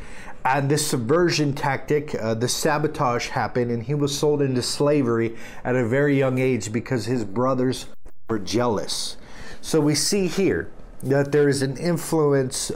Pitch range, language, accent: 110-140 Hz, English, American